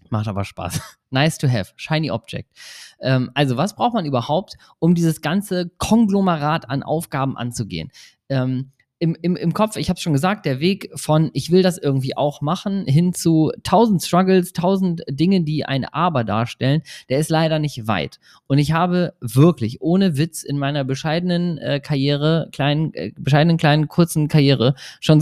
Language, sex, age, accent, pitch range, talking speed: German, male, 20-39, German, 130-175 Hz, 170 wpm